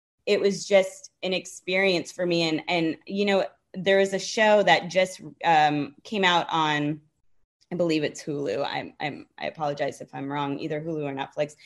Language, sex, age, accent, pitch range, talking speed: English, female, 20-39, American, 165-220 Hz, 185 wpm